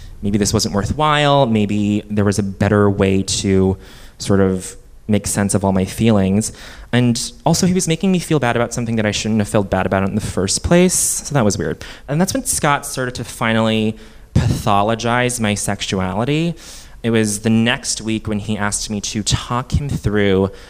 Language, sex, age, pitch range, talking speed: English, male, 20-39, 100-130 Hz, 195 wpm